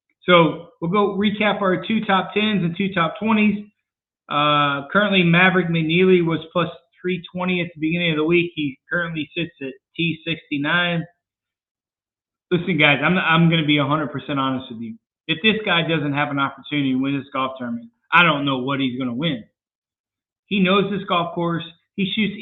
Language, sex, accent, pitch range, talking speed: English, male, American, 145-190 Hz, 180 wpm